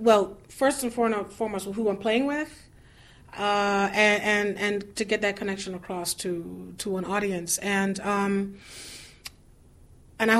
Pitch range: 195-230 Hz